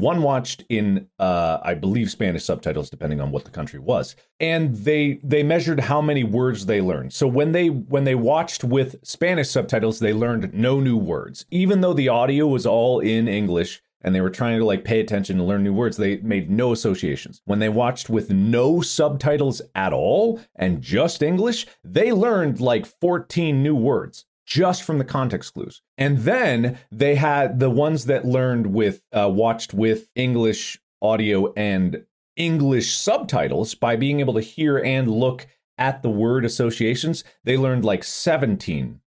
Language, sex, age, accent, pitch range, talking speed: English, male, 40-59, American, 110-150 Hz, 175 wpm